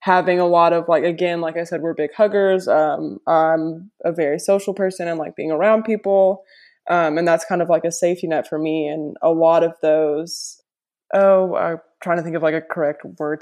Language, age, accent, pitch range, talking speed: English, 20-39, American, 165-195 Hz, 220 wpm